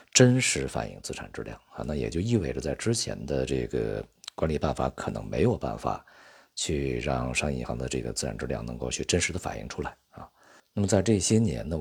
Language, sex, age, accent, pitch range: Chinese, male, 50-69, native, 65-85 Hz